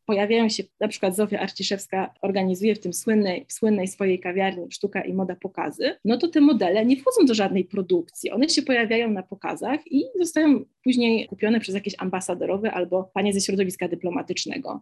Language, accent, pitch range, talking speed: Polish, native, 190-230 Hz, 175 wpm